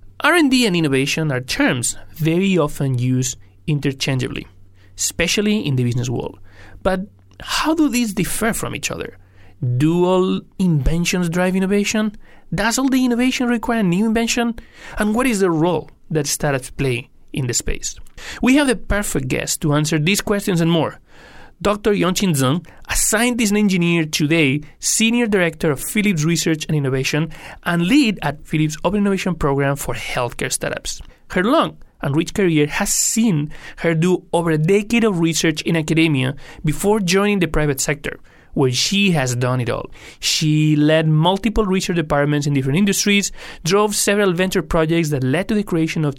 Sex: male